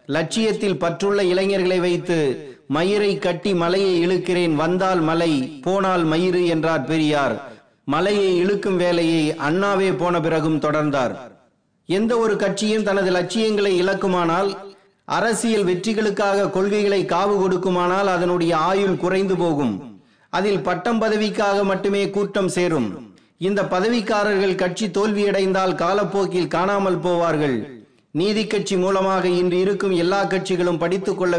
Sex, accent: male, native